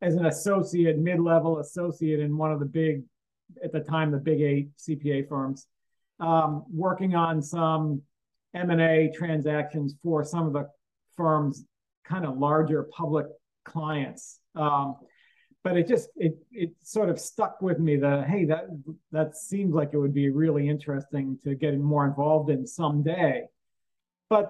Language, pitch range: English, 150-170 Hz